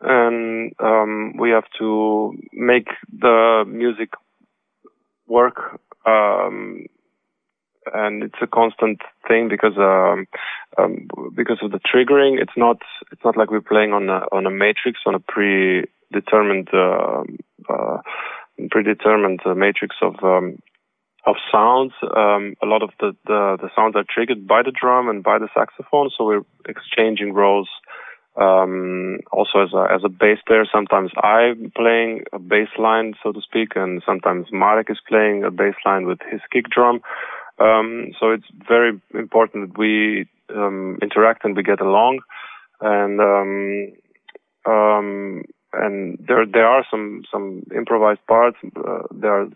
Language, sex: Hungarian, male